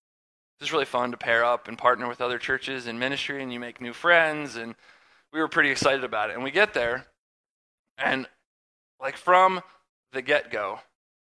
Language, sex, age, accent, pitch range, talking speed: English, male, 20-39, American, 125-160 Hz, 185 wpm